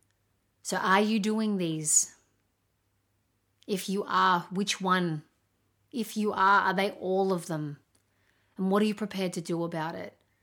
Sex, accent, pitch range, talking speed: female, Australian, 115-185 Hz, 155 wpm